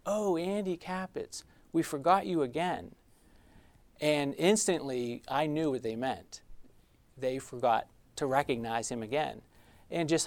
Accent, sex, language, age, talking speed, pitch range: American, male, English, 40-59, 130 wpm, 115-145 Hz